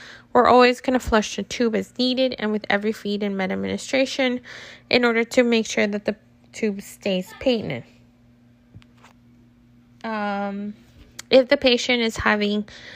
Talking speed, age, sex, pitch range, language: 145 wpm, 10-29, female, 190-235 Hz, English